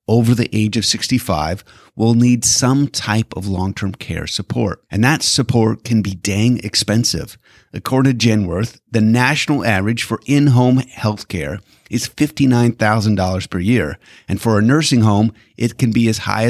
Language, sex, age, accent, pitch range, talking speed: English, male, 30-49, American, 100-125 Hz, 160 wpm